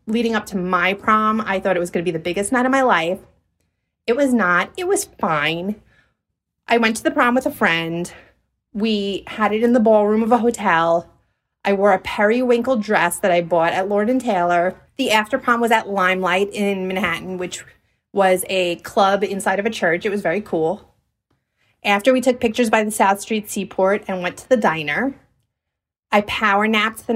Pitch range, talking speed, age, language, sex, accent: 185-225 Hz, 195 wpm, 30-49, English, female, American